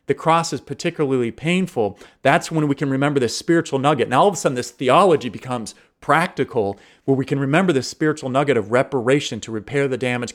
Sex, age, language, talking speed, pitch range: male, 40-59, English, 205 wpm, 125-155 Hz